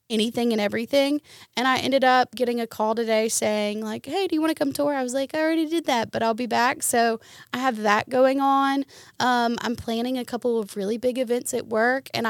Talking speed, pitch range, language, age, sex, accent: 240 wpm, 220-275 Hz, English, 20-39, female, American